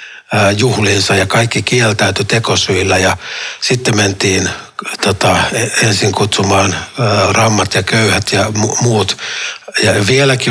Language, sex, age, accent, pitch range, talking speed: Finnish, male, 60-79, native, 95-115 Hz, 115 wpm